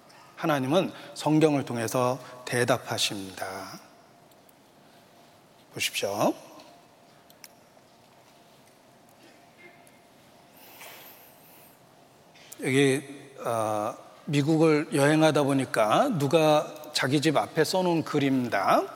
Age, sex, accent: 40-59, male, native